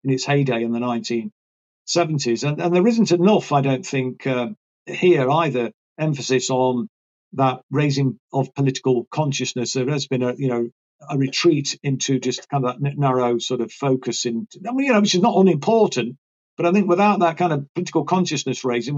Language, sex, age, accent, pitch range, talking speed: English, male, 50-69, British, 125-150 Hz, 180 wpm